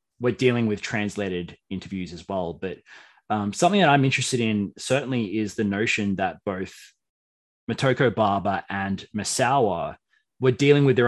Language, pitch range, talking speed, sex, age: English, 100-125 Hz, 150 wpm, male, 20-39